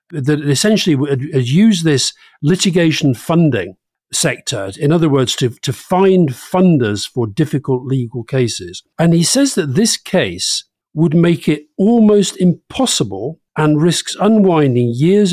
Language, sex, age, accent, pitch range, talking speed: English, male, 50-69, British, 120-170 Hz, 130 wpm